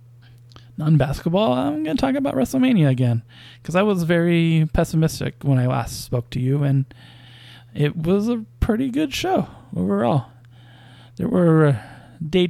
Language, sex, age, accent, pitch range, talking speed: English, male, 20-39, American, 125-165 Hz, 150 wpm